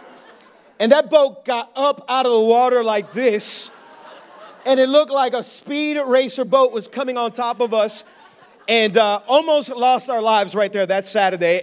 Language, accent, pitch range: English, American, 230-270 Hz